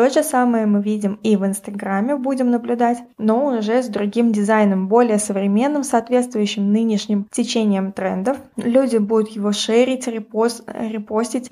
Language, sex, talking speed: Russian, female, 135 wpm